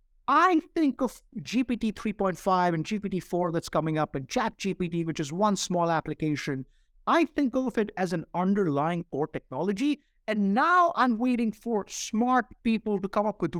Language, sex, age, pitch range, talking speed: English, male, 50-69, 170-245 Hz, 170 wpm